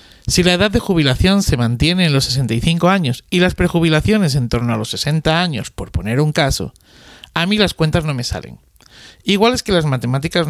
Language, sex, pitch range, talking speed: Spanish, male, 125-165 Hz, 205 wpm